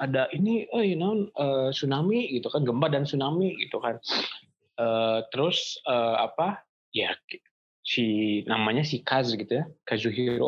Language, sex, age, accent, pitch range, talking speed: Indonesian, male, 20-39, native, 105-140 Hz, 145 wpm